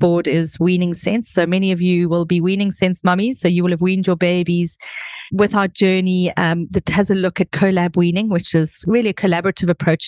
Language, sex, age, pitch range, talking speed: English, female, 40-59, 170-195 Hz, 220 wpm